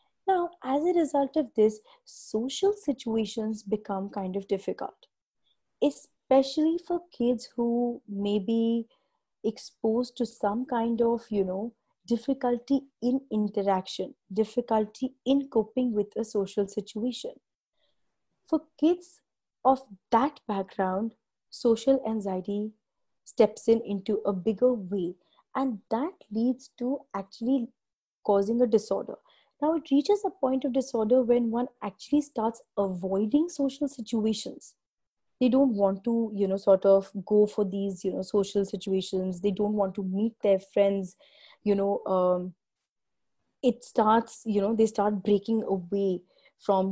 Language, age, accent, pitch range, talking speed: English, 30-49, Indian, 200-260 Hz, 135 wpm